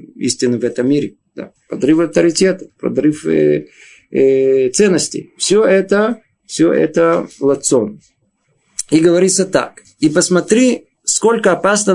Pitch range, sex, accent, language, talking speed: 145-190 Hz, male, native, Russian, 115 wpm